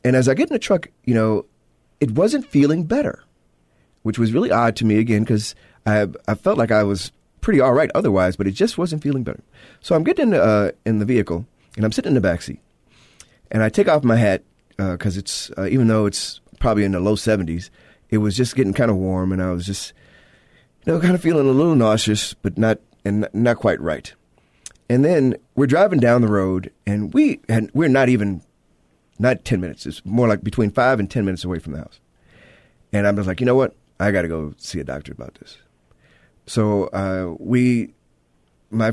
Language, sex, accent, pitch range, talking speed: English, male, American, 95-120 Hz, 220 wpm